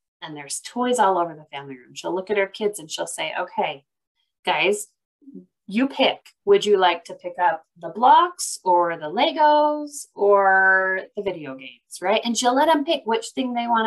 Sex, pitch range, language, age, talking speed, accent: female, 185-265 Hz, English, 30-49, 195 wpm, American